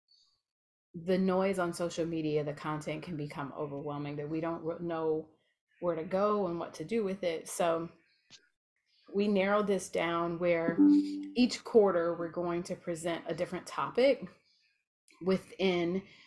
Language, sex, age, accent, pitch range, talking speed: English, female, 30-49, American, 165-190 Hz, 145 wpm